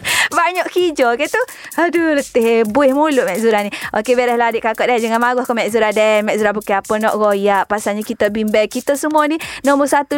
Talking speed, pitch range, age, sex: 220 wpm, 210-285 Hz, 20-39, female